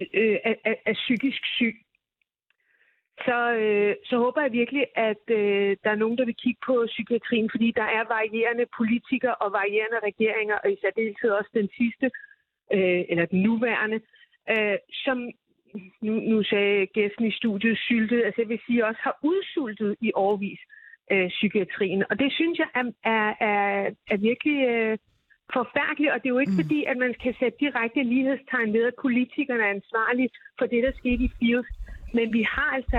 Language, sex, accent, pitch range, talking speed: Danish, female, native, 210-250 Hz, 175 wpm